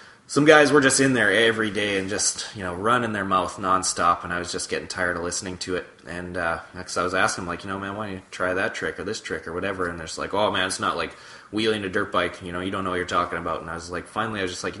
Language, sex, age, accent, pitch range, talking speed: English, male, 20-39, American, 90-125 Hz, 330 wpm